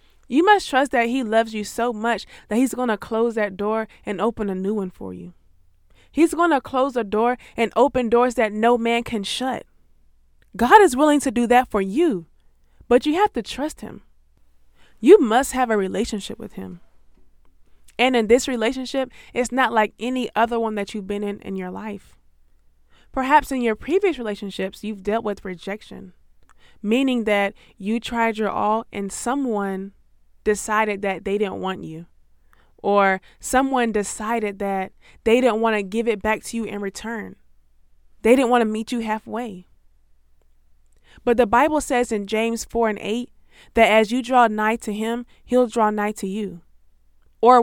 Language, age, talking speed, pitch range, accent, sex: English, 20-39, 180 wpm, 195-245 Hz, American, female